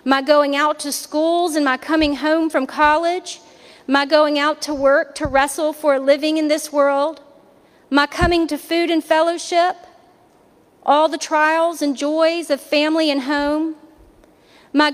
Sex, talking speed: female, 160 wpm